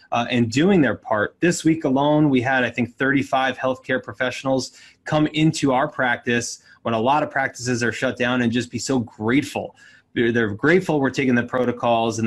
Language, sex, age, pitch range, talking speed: English, male, 20-39, 120-155 Hz, 190 wpm